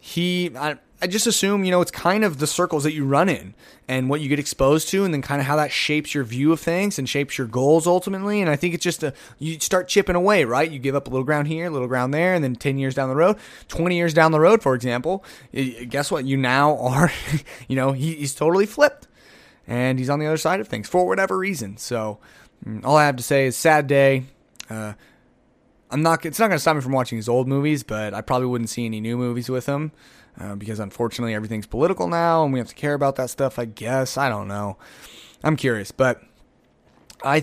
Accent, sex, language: American, male, English